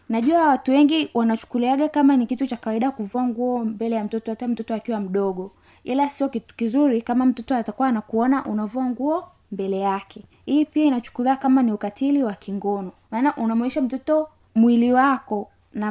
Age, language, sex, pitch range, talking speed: 20-39, Swahili, female, 215-275 Hz, 160 wpm